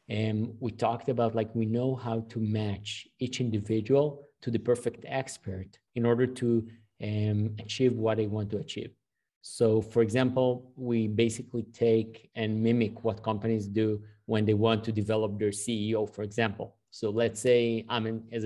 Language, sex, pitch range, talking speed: English, male, 110-120 Hz, 165 wpm